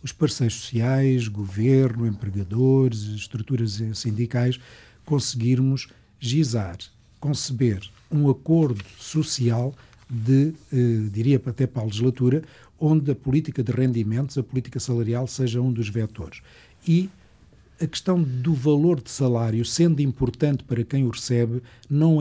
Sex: male